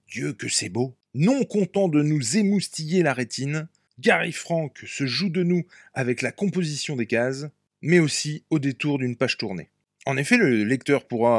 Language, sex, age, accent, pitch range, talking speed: French, male, 20-39, French, 125-160 Hz, 180 wpm